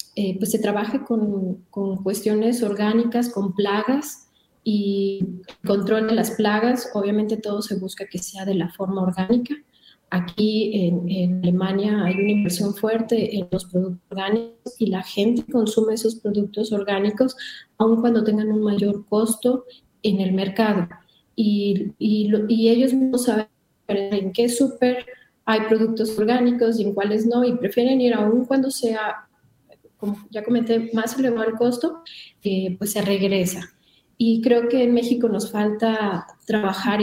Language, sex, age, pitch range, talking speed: Spanish, female, 30-49, 205-235 Hz, 150 wpm